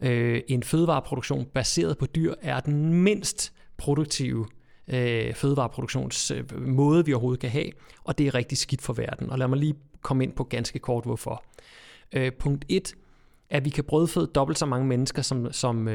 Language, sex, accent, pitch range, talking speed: Danish, male, native, 120-150 Hz, 175 wpm